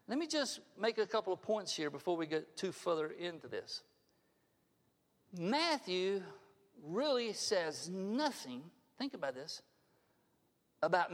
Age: 50-69